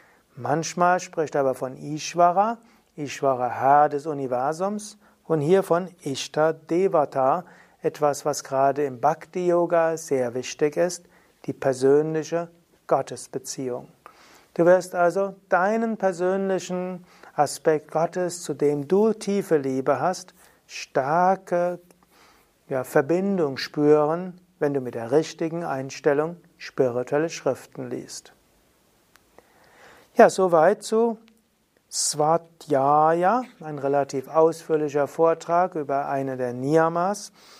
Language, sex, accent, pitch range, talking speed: German, male, German, 140-180 Hz, 100 wpm